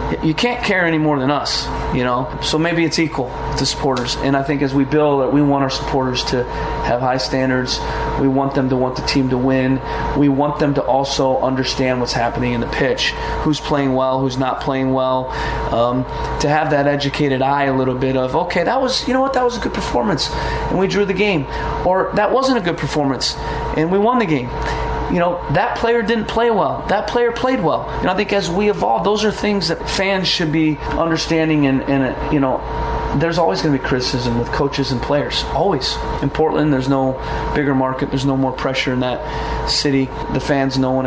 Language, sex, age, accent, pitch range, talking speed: English, male, 30-49, American, 130-155 Hz, 220 wpm